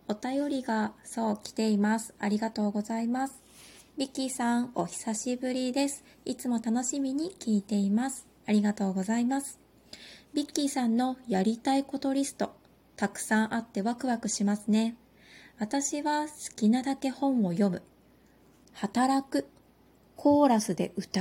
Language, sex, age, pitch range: Japanese, female, 20-39, 210-270 Hz